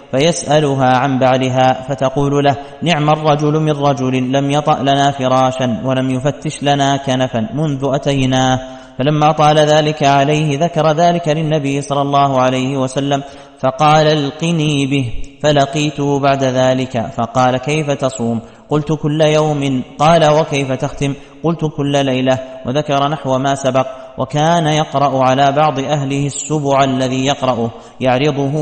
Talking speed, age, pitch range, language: 130 wpm, 30-49, 130-145 Hz, Arabic